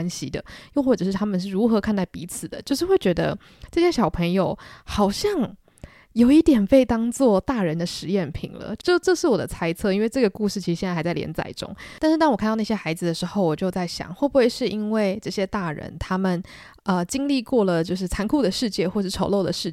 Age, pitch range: 20-39, 175-220 Hz